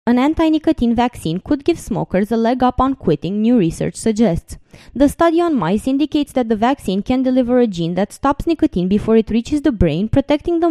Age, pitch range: 20-39, 180-260 Hz